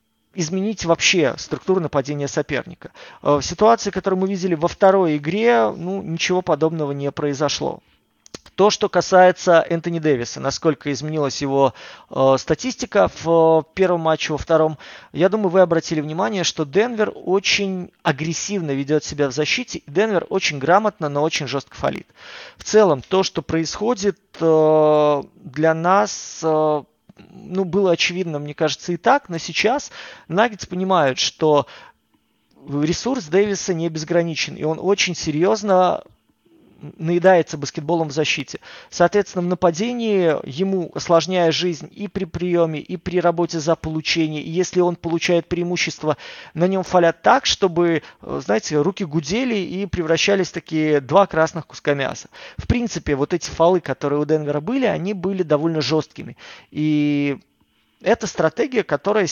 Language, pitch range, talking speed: Russian, 155-190 Hz, 140 wpm